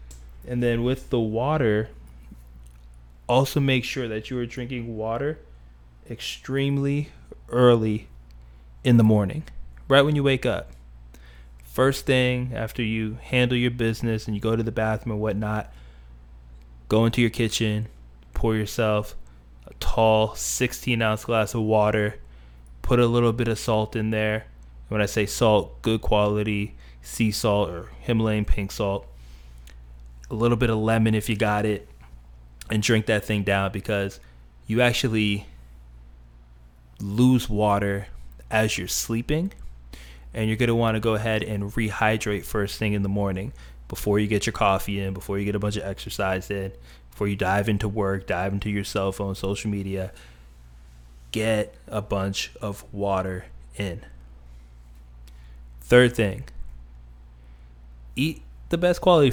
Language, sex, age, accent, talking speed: English, male, 20-39, American, 145 wpm